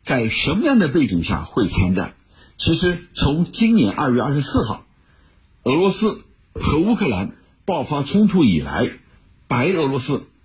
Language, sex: Chinese, male